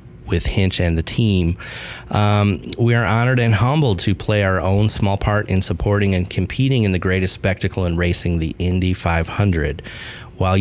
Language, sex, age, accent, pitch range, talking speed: English, male, 30-49, American, 90-115 Hz, 175 wpm